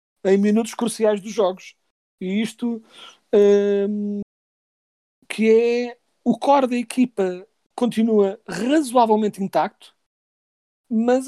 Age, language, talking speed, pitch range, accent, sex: 40-59, Portuguese, 95 wpm, 185-225 Hz, Portuguese, male